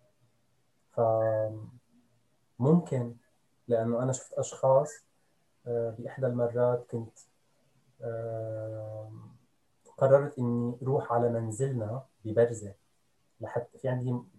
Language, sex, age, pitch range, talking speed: Arabic, male, 20-39, 115-140 Hz, 70 wpm